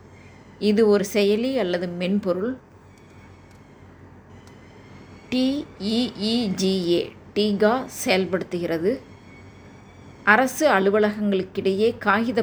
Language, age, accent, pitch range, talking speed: Tamil, 20-39, native, 150-210 Hz, 55 wpm